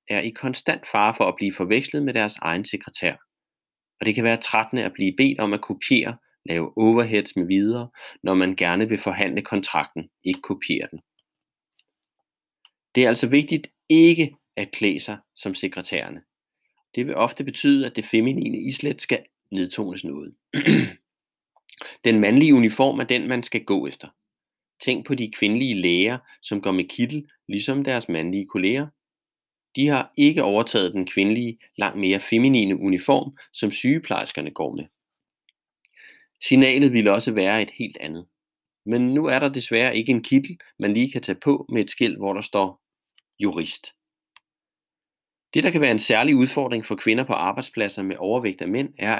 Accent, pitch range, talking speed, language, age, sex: native, 100-130 Hz, 165 wpm, Danish, 30-49, male